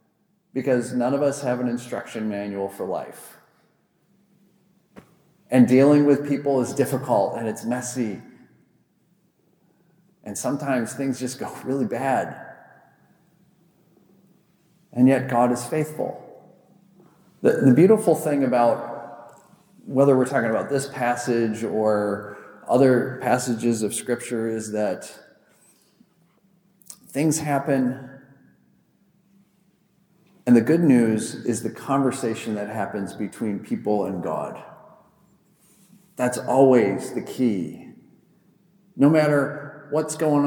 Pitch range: 120-180 Hz